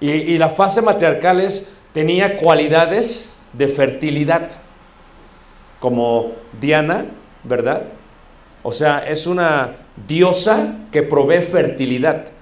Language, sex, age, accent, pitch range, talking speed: Spanish, male, 50-69, Mexican, 130-175 Hz, 100 wpm